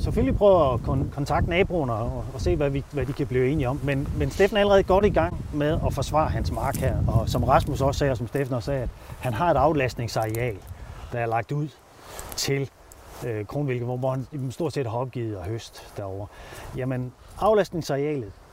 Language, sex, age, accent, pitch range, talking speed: Danish, male, 30-49, native, 115-155 Hz, 200 wpm